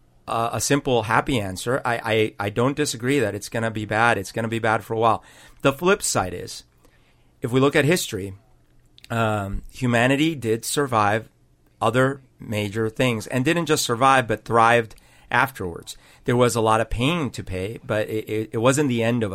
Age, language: 40-59, English